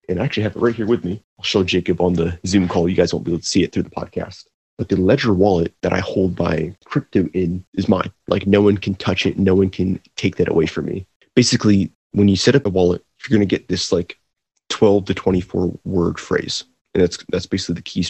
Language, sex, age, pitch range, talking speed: English, male, 30-49, 90-100 Hz, 255 wpm